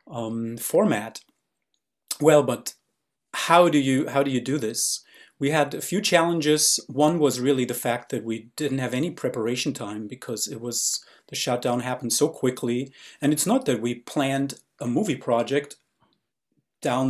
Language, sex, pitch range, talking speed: English, male, 120-145 Hz, 165 wpm